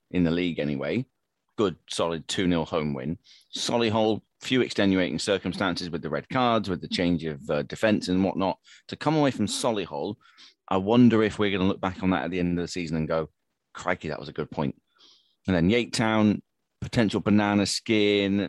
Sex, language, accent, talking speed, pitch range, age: male, English, British, 200 wpm, 85-105 Hz, 30-49